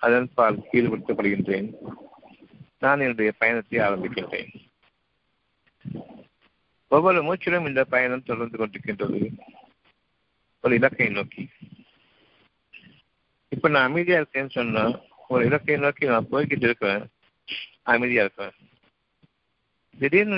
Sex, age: male, 60-79